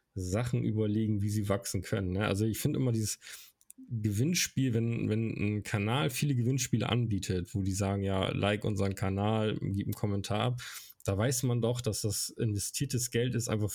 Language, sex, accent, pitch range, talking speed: German, male, German, 100-120 Hz, 175 wpm